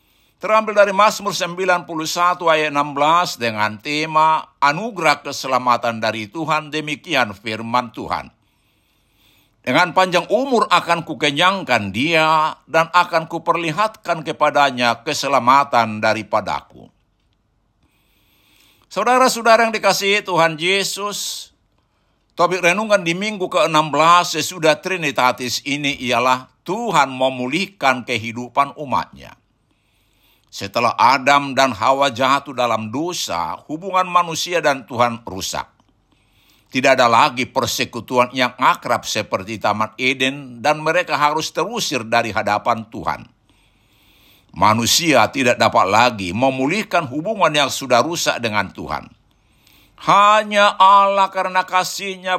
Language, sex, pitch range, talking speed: Indonesian, male, 115-175 Hz, 100 wpm